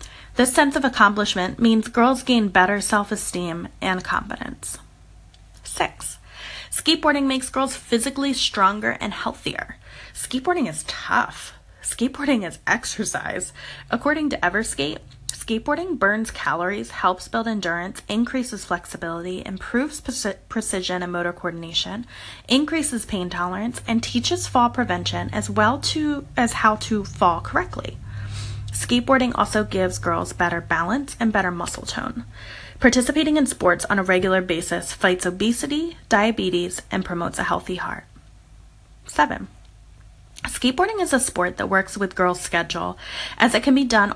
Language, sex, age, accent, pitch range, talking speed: English, female, 20-39, American, 175-250 Hz, 130 wpm